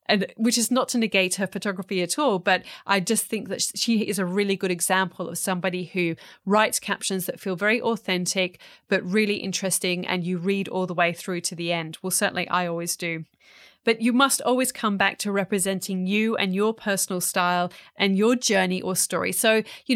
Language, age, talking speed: English, 30-49, 200 wpm